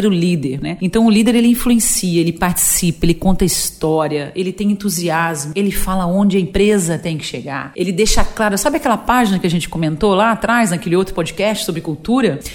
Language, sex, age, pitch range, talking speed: Portuguese, female, 40-59, 165-230 Hz, 200 wpm